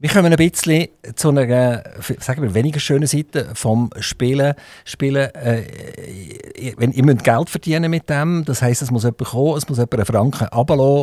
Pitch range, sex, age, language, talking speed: 110-140 Hz, male, 50-69, German, 185 wpm